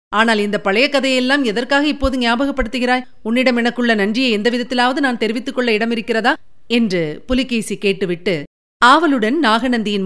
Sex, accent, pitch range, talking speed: female, native, 200-255 Hz, 120 wpm